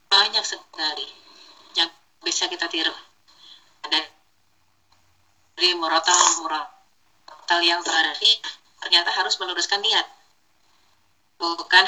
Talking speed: 90 wpm